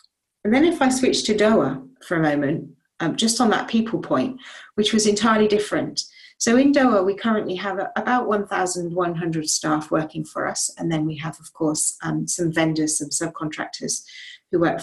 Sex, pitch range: female, 160-220 Hz